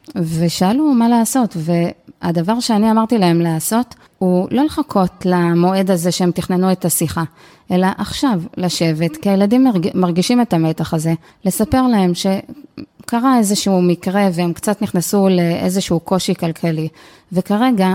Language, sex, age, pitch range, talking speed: Hebrew, female, 20-39, 175-215 Hz, 125 wpm